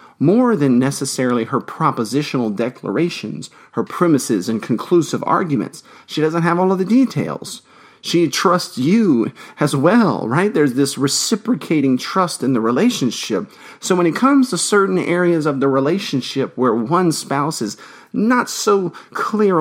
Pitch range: 135-190 Hz